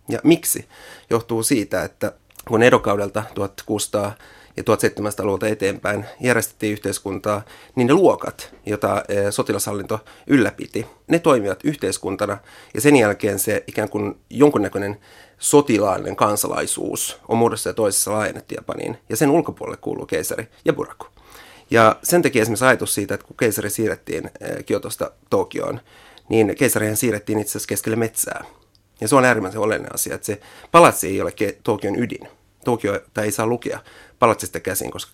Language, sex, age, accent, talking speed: Finnish, male, 30-49, native, 145 wpm